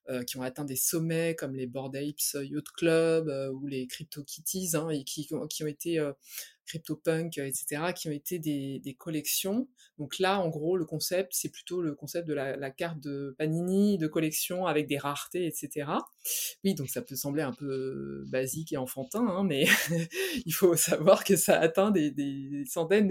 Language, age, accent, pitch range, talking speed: French, 20-39, French, 145-180 Hz, 200 wpm